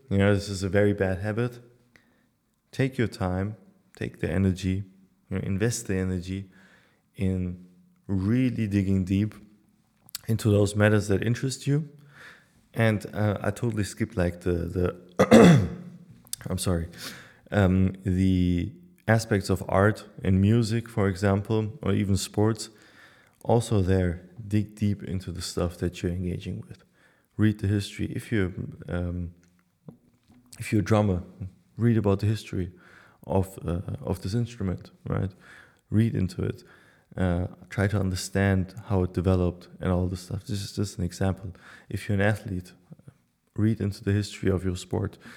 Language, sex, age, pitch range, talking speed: English, male, 20-39, 95-110 Hz, 150 wpm